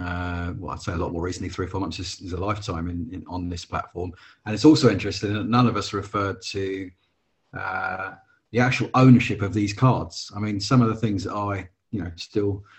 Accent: British